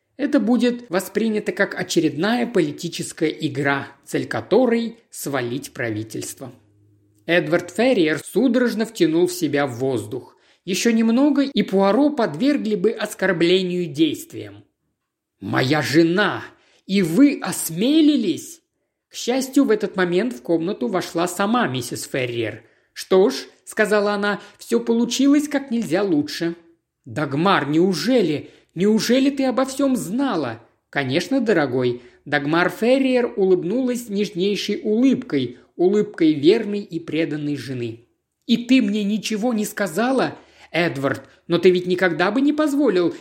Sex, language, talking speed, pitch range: male, Russian, 120 wpm, 165-245 Hz